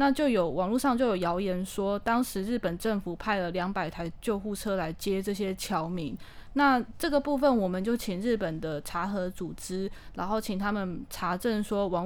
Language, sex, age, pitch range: Chinese, female, 10-29, 185-230 Hz